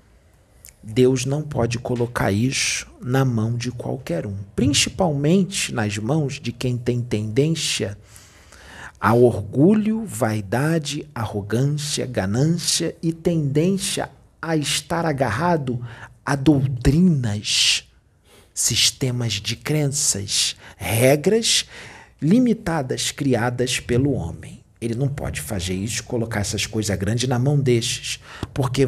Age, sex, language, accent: 40-59, male, Portuguese, Brazilian